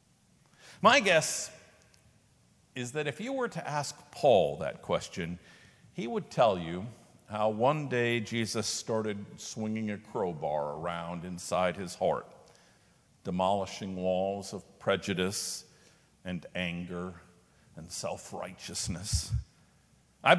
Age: 50-69